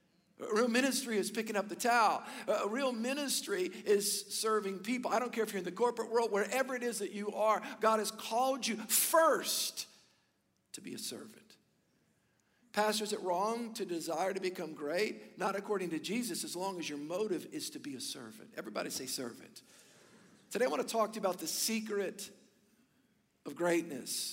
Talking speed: 185 wpm